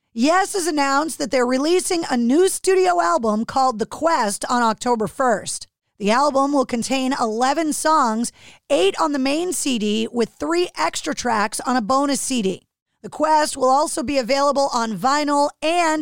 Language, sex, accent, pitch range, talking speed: English, female, American, 235-295 Hz, 165 wpm